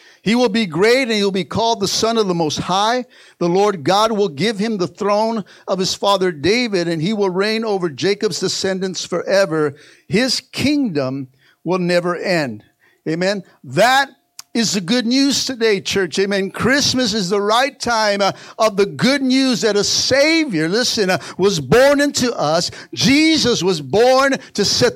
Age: 60-79